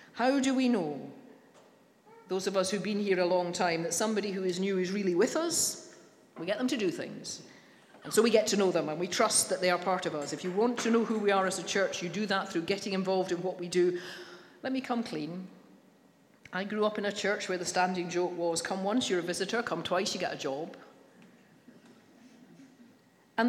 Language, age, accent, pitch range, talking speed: English, 40-59, British, 180-230 Hz, 235 wpm